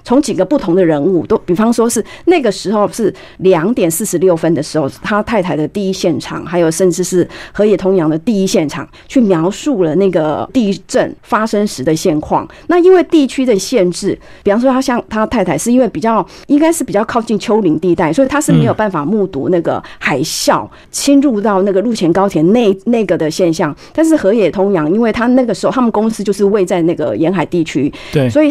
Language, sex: Chinese, female